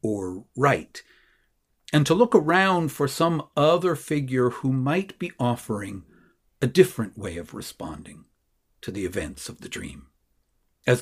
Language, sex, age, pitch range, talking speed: English, male, 50-69, 110-150 Hz, 140 wpm